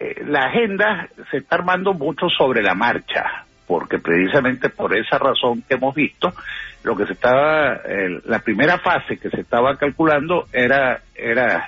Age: 60-79